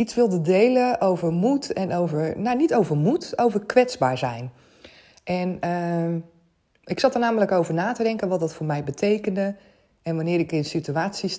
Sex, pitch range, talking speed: female, 155-215 Hz, 180 wpm